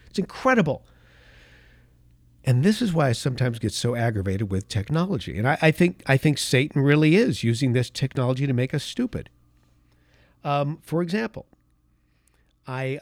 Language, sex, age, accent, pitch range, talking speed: English, male, 50-69, American, 125-175 Hz, 150 wpm